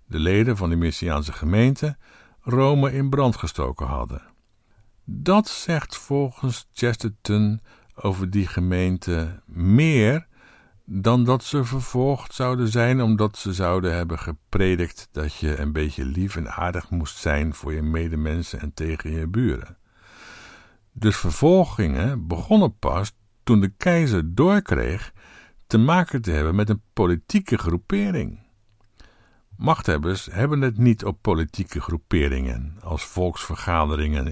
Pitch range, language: 80-115 Hz, Dutch